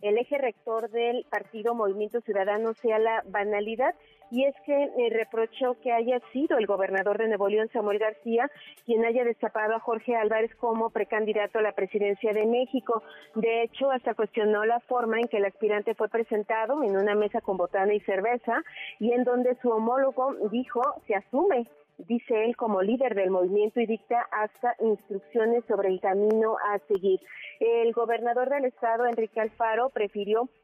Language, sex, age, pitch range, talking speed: Spanish, female, 40-59, 205-240 Hz, 170 wpm